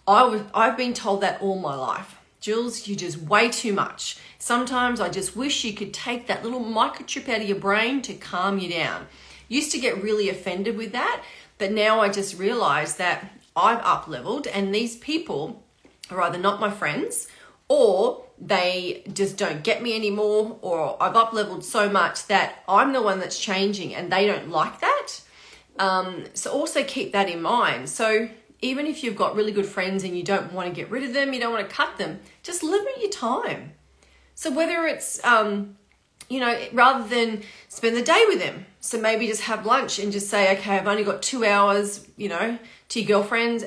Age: 40-59